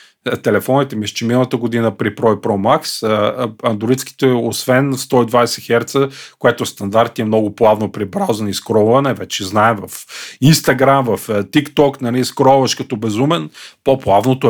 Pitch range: 110-135 Hz